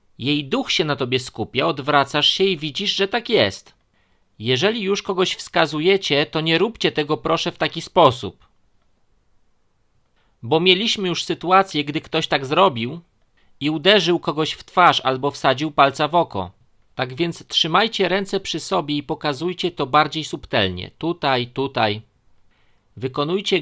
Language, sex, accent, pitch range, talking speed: Polish, male, native, 130-180 Hz, 145 wpm